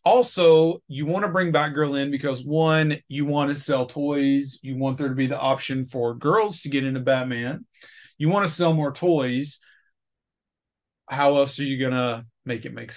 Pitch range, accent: 130-150 Hz, American